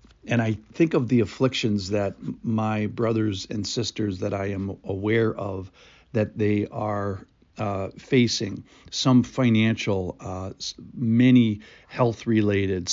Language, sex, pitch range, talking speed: English, male, 105-130 Hz, 125 wpm